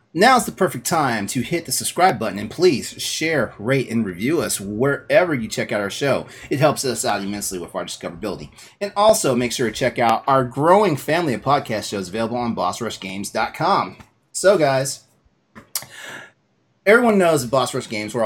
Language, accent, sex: English, American, male